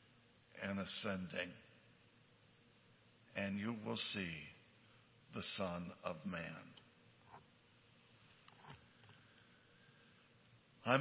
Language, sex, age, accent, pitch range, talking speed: English, male, 60-79, American, 115-140 Hz, 60 wpm